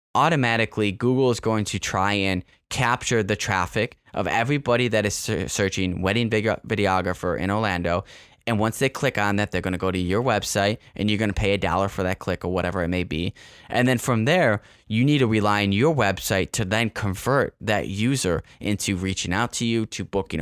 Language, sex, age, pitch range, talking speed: English, male, 10-29, 95-110 Hz, 205 wpm